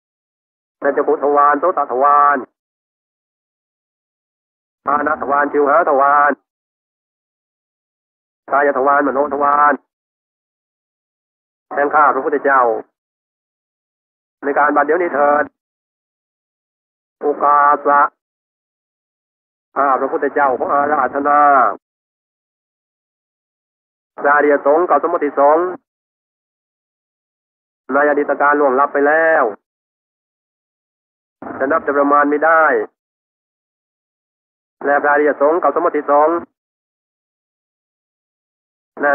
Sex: male